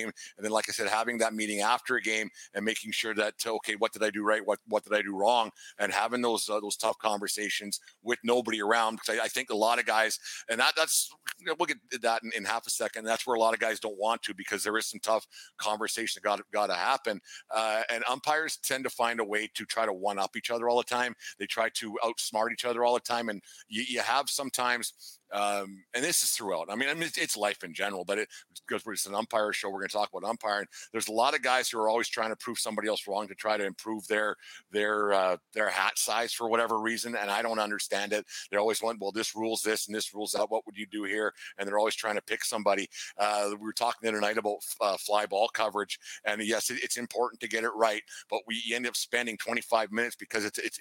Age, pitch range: 50-69, 105-115 Hz